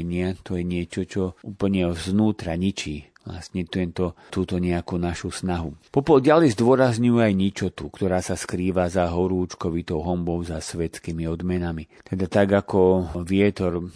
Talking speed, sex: 135 wpm, male